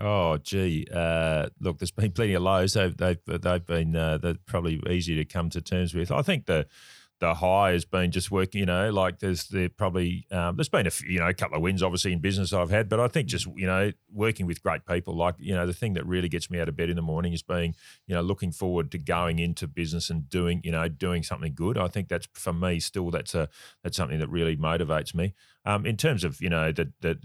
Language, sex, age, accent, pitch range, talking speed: English, male, 30-49, Australian, 80-95 Hz, 250 wpm